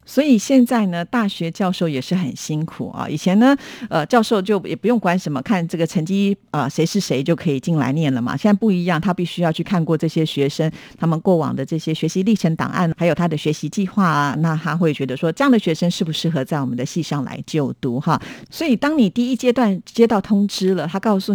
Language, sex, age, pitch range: Chinese, female, 50-69, 155-200 Hz